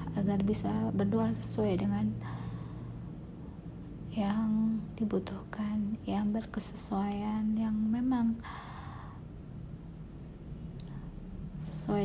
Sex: female